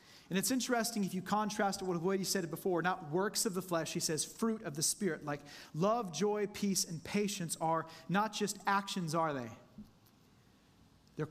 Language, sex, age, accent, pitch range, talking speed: English, male, 30-49, American, 165-205 Hz, 200 wpm